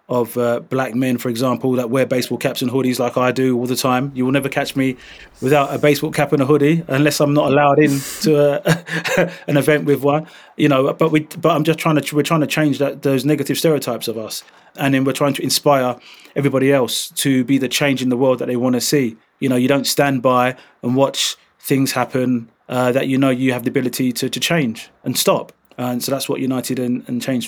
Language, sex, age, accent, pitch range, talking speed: English, male, 30-49, British, 120-140 Hz, 240 wpm